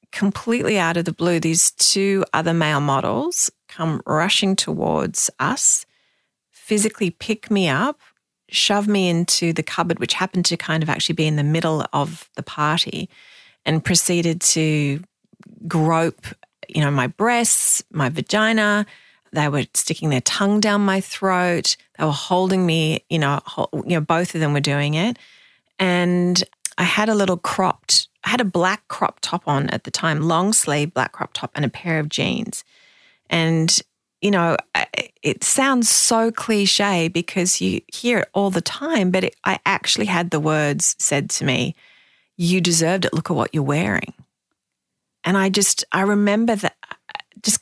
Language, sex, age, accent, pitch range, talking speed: English, female, 40-59, Australian, 160-210 Hz, 165 wpm